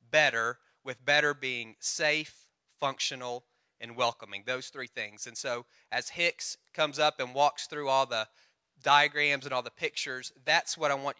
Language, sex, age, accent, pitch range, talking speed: English, male, 30-49, American, 140-175 Hz, 165 wpm